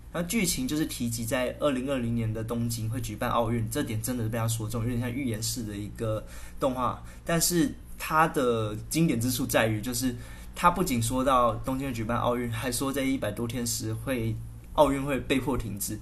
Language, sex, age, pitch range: Chinese, male, 20-39, 110-130 Hz